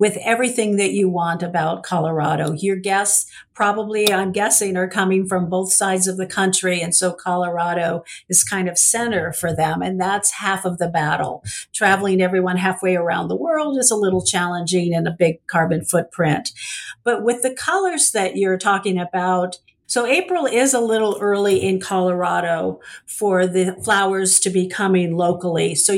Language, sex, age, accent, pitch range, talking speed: English, female, 50-69, American, 180-200 Hz, 170 wpm